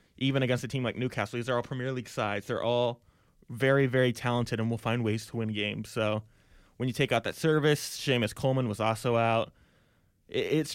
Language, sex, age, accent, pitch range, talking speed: English, male, 20-39, American, 115-145 Hz, 205 wpm